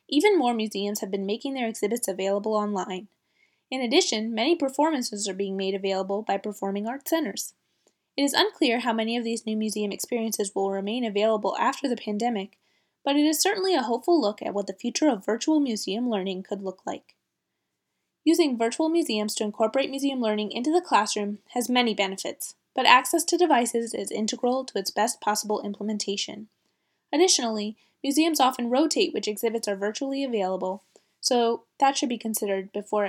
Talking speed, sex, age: 170 wpm, female, 20-39